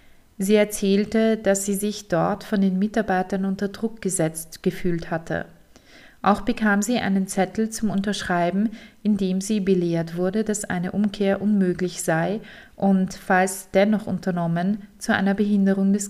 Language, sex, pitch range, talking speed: German, female, 185-215 Hz, 145 wpm